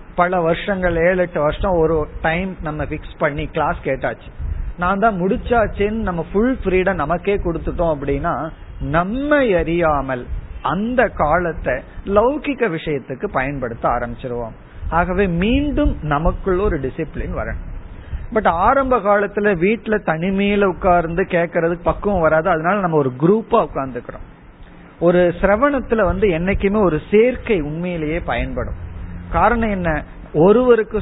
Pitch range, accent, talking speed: 155-210 Hz, native, 115 wpm